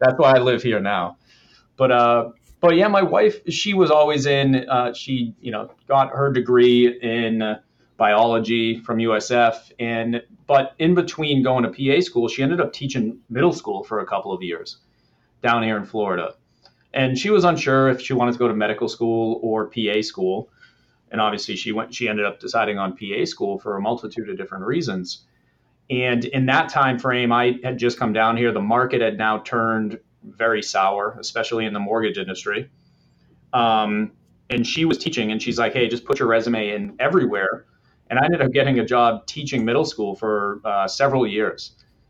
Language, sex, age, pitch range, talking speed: English, male, 30-49, 110-130 Hz, 190 wpm